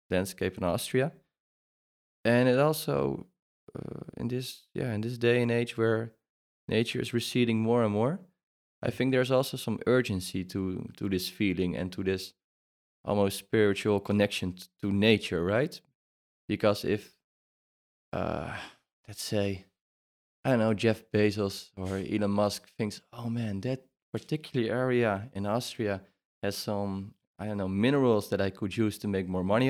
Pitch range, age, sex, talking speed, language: 95-115 Hz, 20-39, male, 155 wpm, Czech